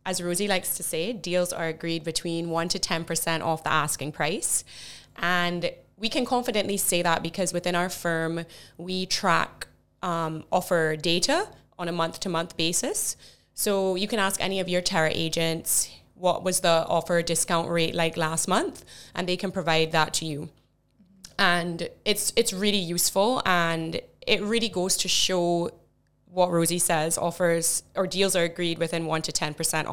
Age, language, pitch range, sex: 20-39, English, 165-190 Hz, female